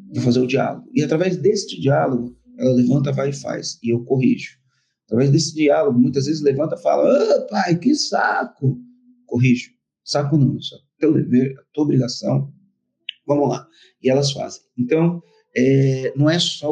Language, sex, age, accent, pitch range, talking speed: Portuguese, male, 40-59, Brazilian, 130-180 Hz, 170 wpm